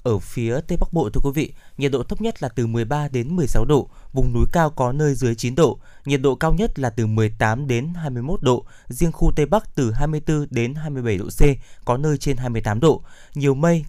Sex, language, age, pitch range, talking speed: male, Vietnamese, 20-39, 115-150 Hz, 230 wpm